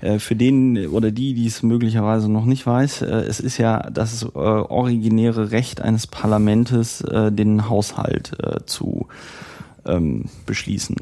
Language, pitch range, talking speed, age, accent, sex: German, 105-120 Hz, 120 wpm, 30-49, German, male